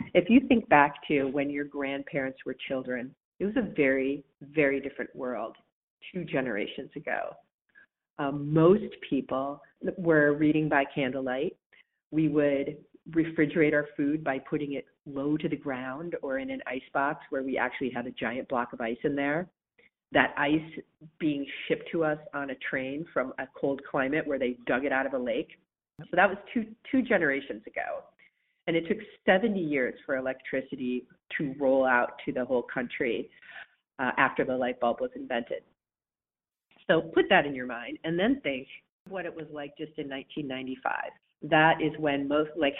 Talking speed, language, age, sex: 175 wpm, English, 40-59, female